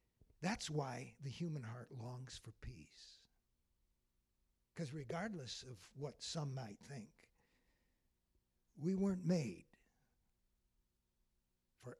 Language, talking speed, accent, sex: English, 95 wpm, American, male